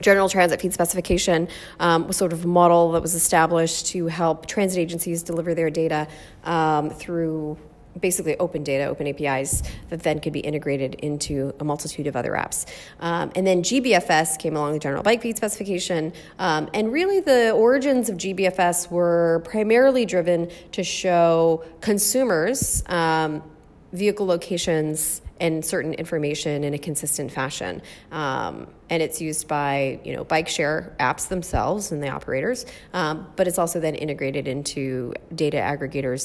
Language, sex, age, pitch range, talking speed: English, female, 30-49, 155-190 Hz, 155 wpm